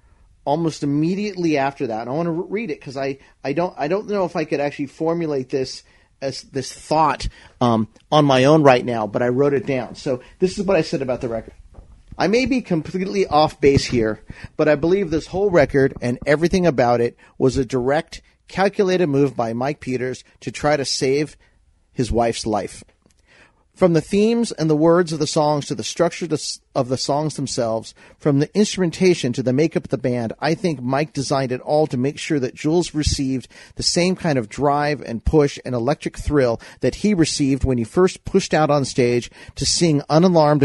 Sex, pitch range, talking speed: male, 125-165 Hz, 205 wpm